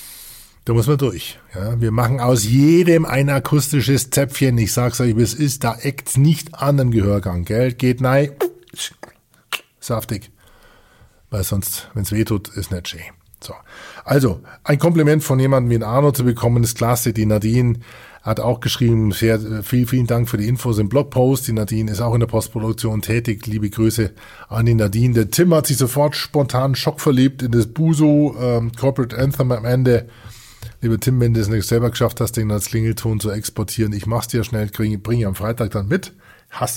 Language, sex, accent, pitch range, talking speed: German, male, German, 110-130 Hz, 195 wpm